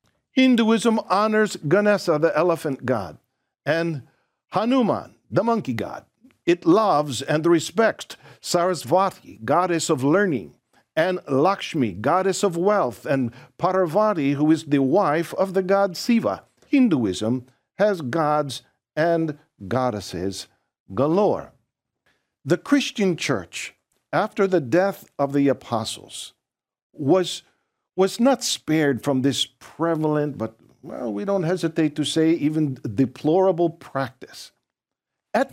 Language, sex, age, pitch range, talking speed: English, male, 50-69, 135-200 Hz, 115 wpm